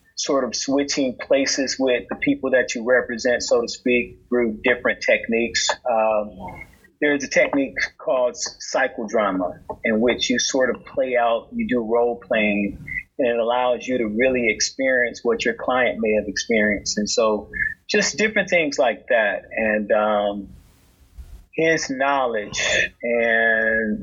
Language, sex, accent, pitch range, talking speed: English, male, American, 105-130 Hz, 145 wpm